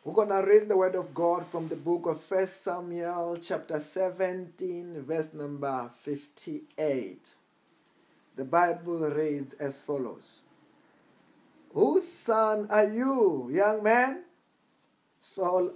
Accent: South African